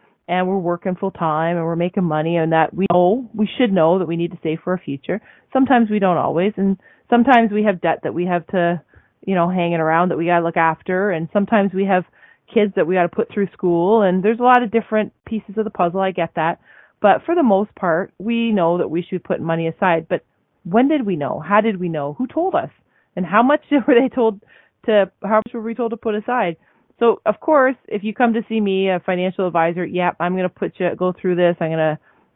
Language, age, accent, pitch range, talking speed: English, 30-49, American, 175-215 Hz, 245 wpm